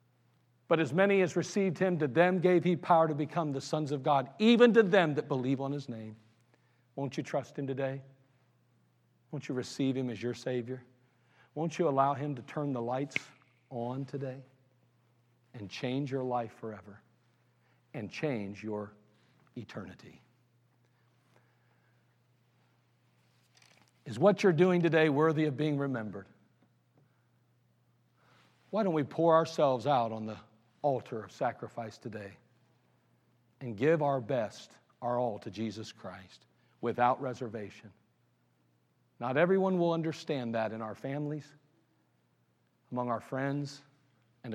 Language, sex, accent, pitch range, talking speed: English, male, American, 105-140 Hz, 135 wpm